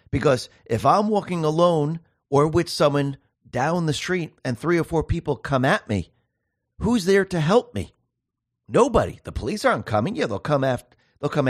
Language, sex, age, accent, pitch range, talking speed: English, male, 40-59, American, 110-170 Hz, 170 wpm